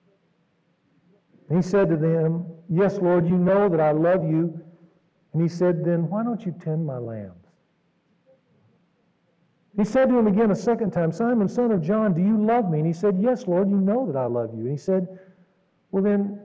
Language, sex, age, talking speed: English, male, 50-69, 195 wpm